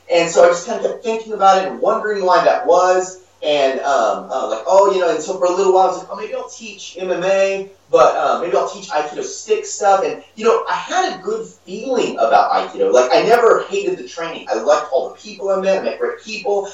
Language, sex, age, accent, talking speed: English, male, 30-49, American, 255 wpm